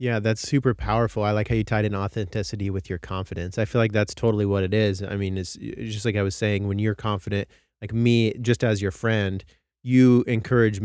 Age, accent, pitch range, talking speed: 30-49, American, 95-115 Hz, 230 wpm